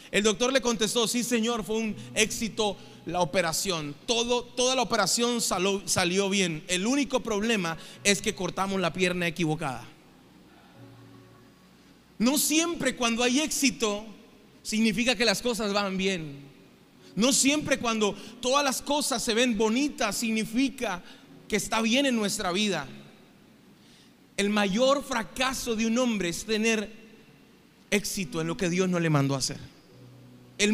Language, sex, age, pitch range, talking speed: Spanish, male, 30-49, 195-245 Hz, 140 wpm